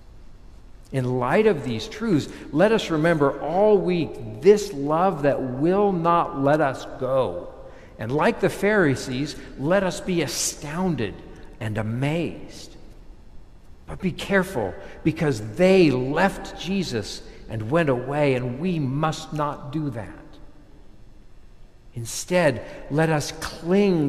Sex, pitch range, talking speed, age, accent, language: male, 130-175 Hz, 120 wpm, 60-79, American, English